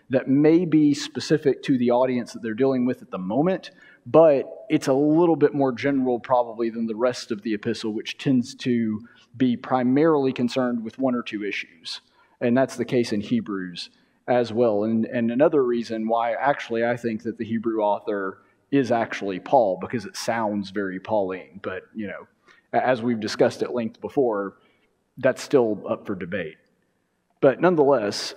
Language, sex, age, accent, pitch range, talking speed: English, male, 30-49, American, 115-135 Hz, 175 wpm